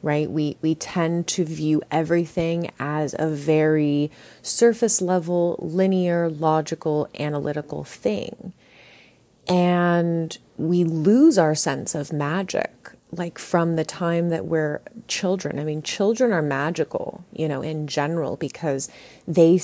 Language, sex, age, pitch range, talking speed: English, female, 30-49, 150-175 Hz, 125 wpm